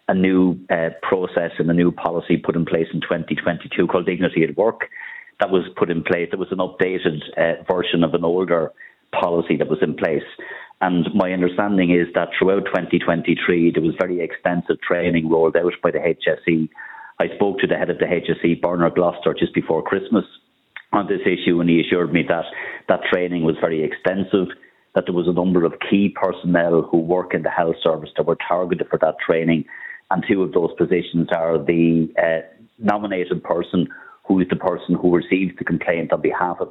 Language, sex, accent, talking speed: English, male, Irish, 195 wpm